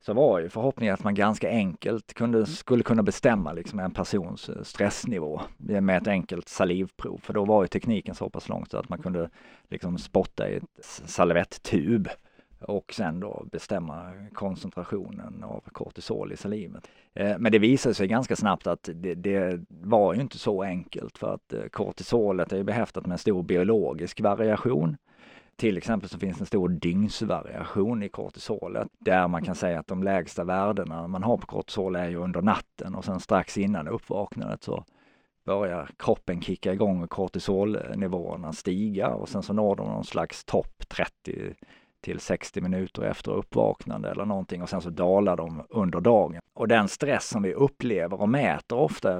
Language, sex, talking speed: Swedish, male, 170 wpm